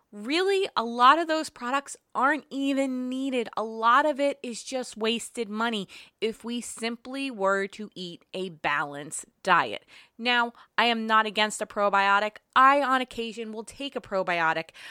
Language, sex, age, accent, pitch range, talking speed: English, female, 20-39, American, 190-245 Hz, 160 wpm